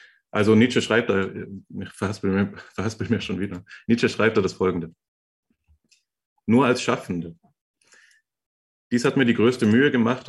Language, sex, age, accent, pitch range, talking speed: German, male, 30-49, German, 95-120 Hz, 140 wpm